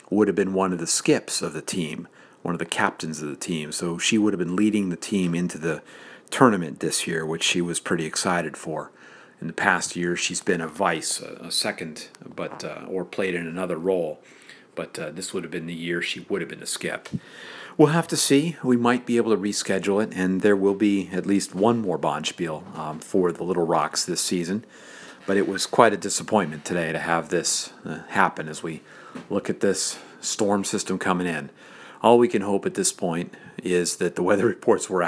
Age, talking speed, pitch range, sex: 40-59, 215 wpm, 85-105 Hz, male